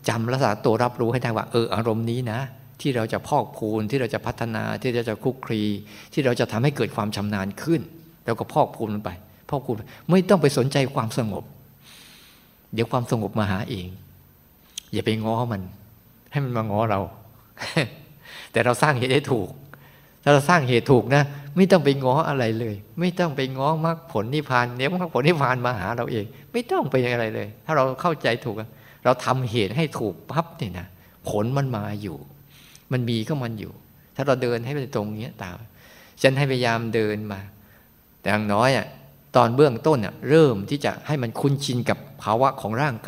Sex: male